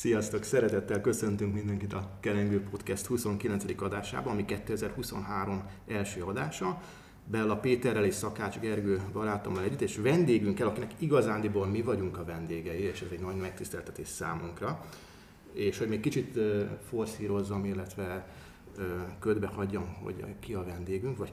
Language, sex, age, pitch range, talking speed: Hungarian, male, 30-49, 100-115 Hz, 135 wpm